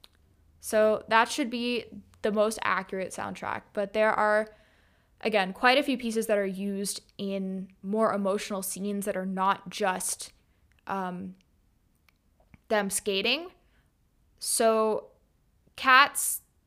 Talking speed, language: 115 wpm, English